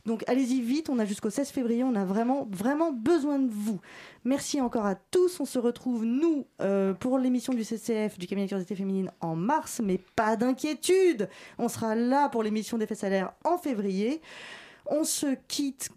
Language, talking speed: French, 190 wpm